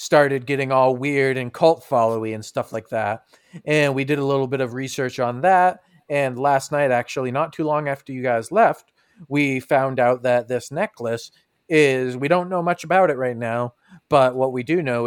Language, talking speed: English, 205 wpm